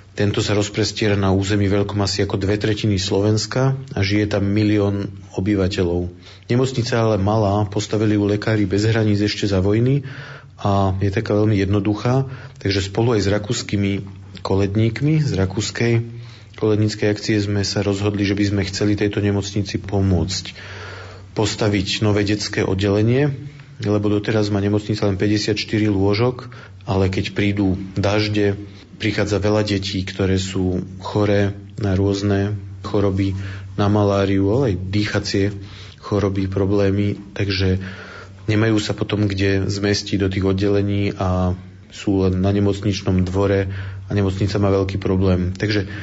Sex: male